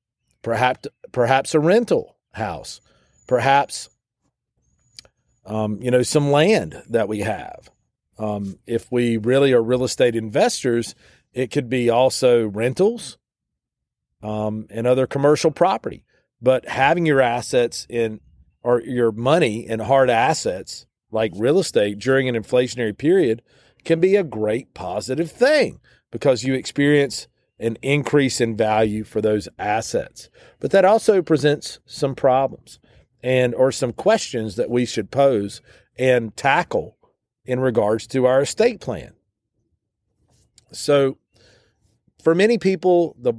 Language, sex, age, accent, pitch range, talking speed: English, male, 40-59, American, 110-140 Hz, 130 wpm